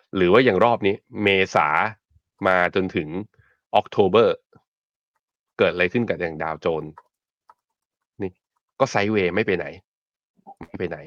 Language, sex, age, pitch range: Thai, male, 20-39, 95-125 Hz